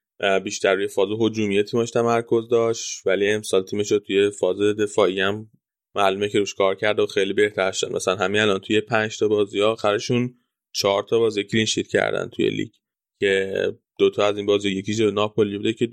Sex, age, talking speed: male, 10-29, 190 wpm